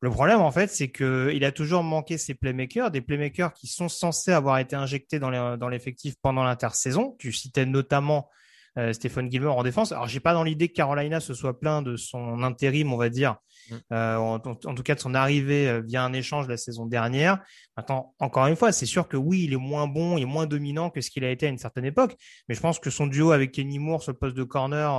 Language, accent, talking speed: French, French, 250 wpm